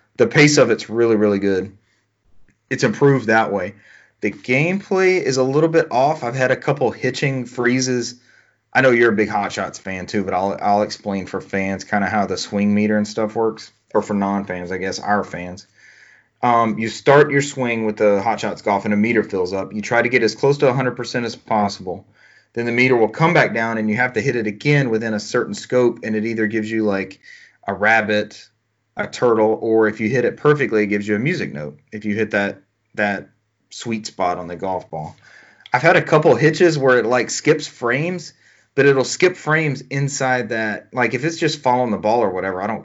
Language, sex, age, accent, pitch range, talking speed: English, male, 30-49, American, 105-130 Hz, 220 wpm